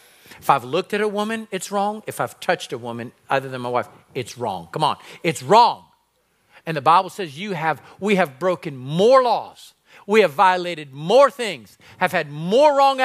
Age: 40-59